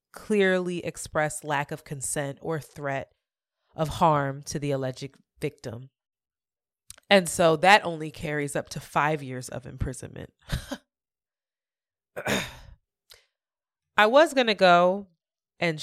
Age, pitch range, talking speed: 20-39, 150-190 Hz, 115 wpm